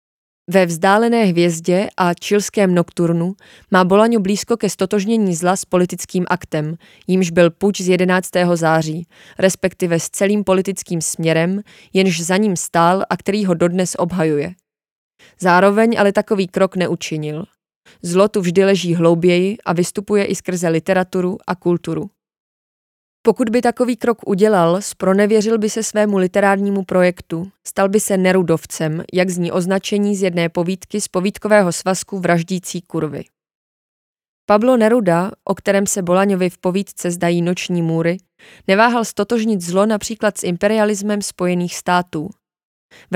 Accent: native